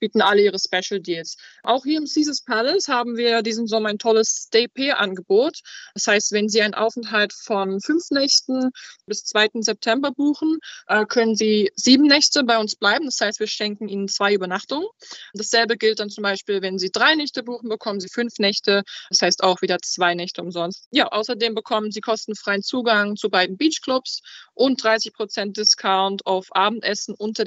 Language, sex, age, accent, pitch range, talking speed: German, female, 20-39, German, 200-240 Hz, 175 wpm